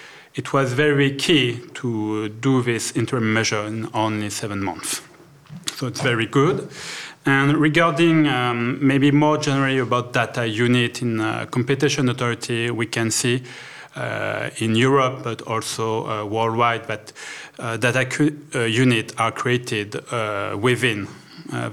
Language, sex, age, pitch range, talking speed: English, male, 30-49, 110-140 Hz, 135 wpm